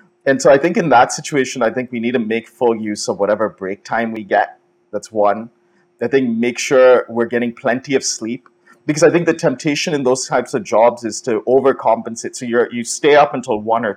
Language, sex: English, male